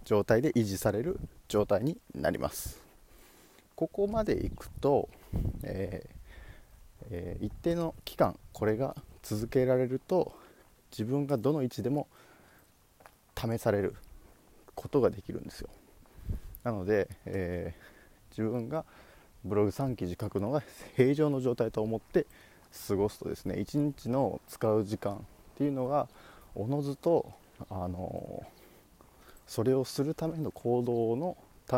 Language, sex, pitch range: Japanese, male, 105-140 Hz